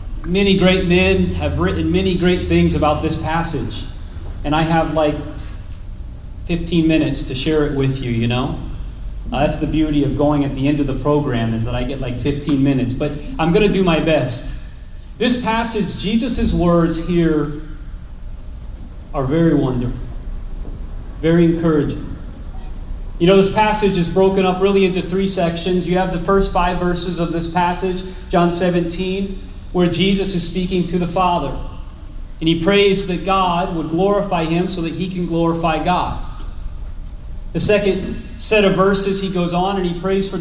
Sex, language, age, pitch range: male, English, 30-49, 145-190 Hz